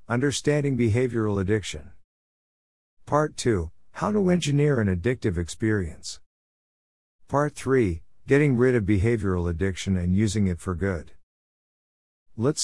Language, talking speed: English, 115 wpm